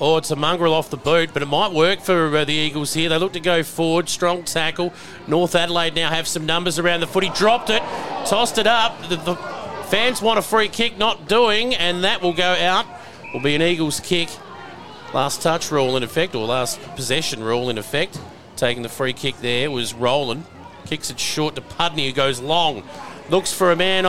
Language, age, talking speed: English, 40-59, 215 wpm